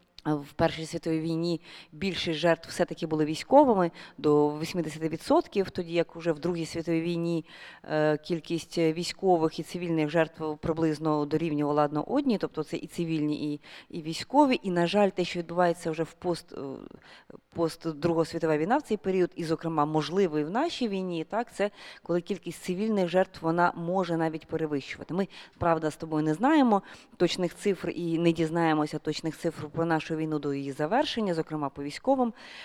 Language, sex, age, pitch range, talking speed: Ukrainian, female, 30-49, 155-190 Hz, 160 wpm